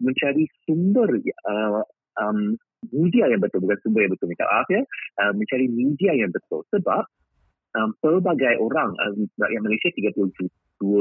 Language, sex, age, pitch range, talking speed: Malay, male, 30-49, 100-150 Hz, 140 wpm